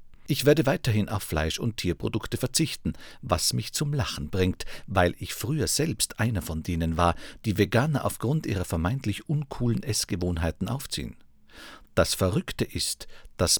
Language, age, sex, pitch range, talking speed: German, 50-69, male, 85-120 Hz, 145 wpm